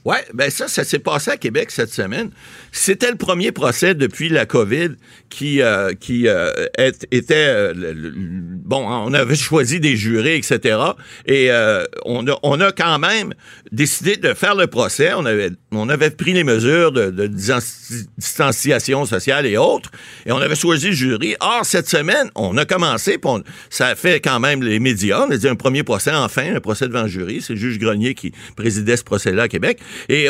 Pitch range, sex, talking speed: 115-165 Hz, male, 205 wpm